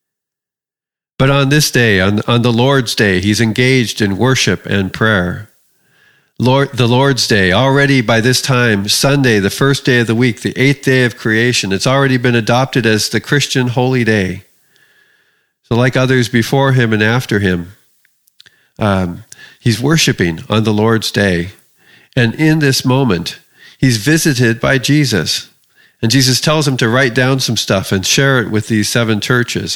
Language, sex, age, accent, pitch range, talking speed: English, male, 50-69, American, 105-135 Hz, 165 wpm